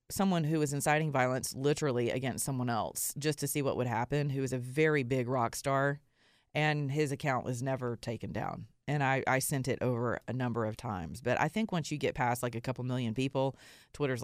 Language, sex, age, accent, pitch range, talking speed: English, female, 30-49, American, 130-165 Hz, 220 wpm